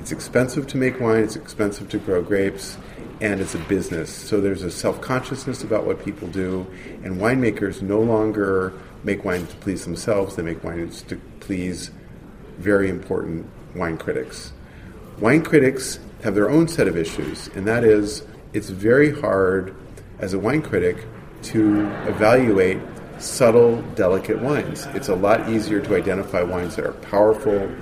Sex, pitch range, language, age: male, 95-115 Hz, English, 40-59